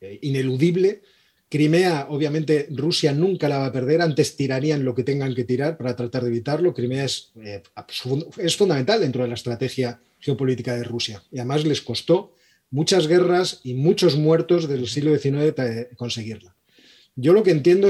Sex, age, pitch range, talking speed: male, 30-49, 130-165 Hz, 160 wpm